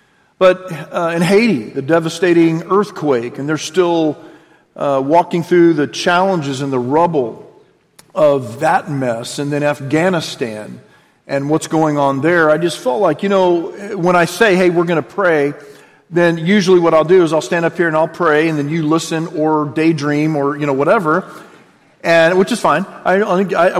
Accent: American